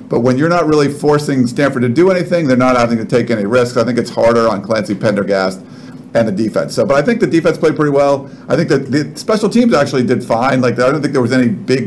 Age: 50-69